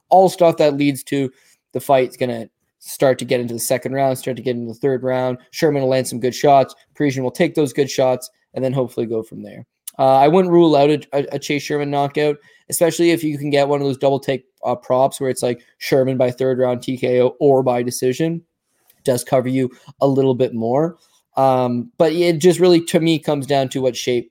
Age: 20-39